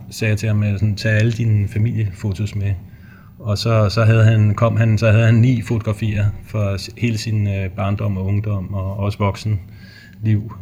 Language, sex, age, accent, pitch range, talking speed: Danish, male, 30-49, native, 100-110 Hz, 175 wpm